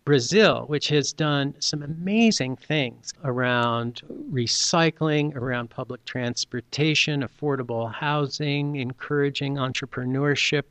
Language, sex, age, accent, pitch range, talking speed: English, male, 50-69, American, 125-160 Hz, 90 wpm